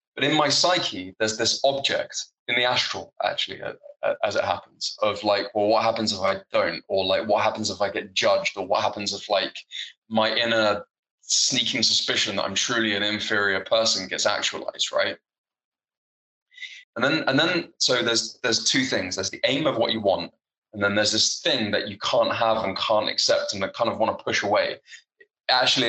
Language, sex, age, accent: English, male, 20-39, British